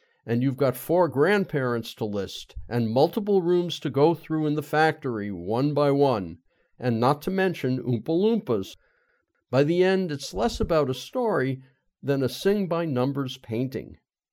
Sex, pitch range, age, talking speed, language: male, 120-160 Hz, 50-69, 155 wpm, English